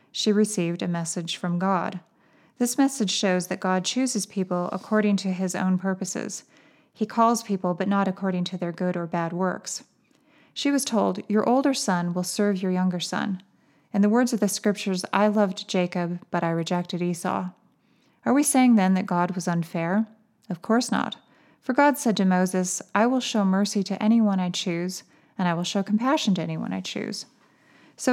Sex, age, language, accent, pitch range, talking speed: female, 30-49, English, American, 180-220 Hz, 190 wpm